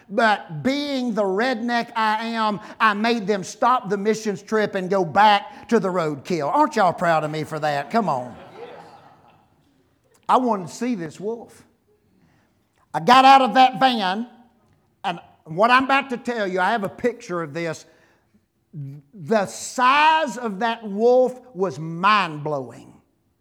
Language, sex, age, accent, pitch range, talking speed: English, male, 50-69, American, 195-255 Hz, 155 wpm